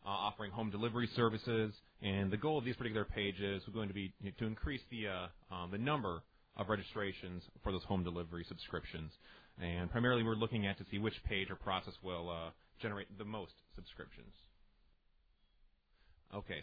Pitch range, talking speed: 95-120 Hz, 180 wpm